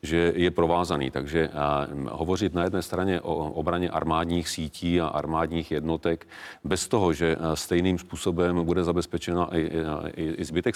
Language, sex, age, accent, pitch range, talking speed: Czech, male, 40-59, native, 80-85 Hz, 135 wpm